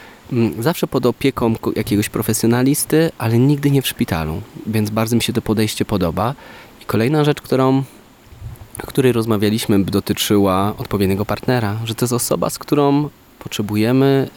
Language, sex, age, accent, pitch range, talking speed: Polish, male, 20-39, native, 105-130 Hz, 140 wpm